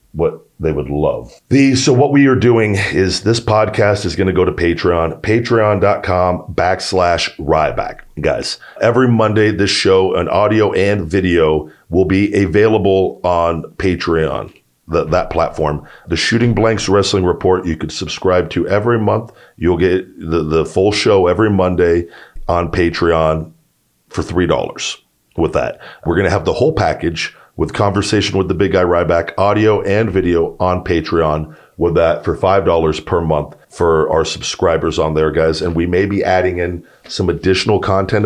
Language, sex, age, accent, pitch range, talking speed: English, male, 40-59, American, 85-100 Hz, 165 wpm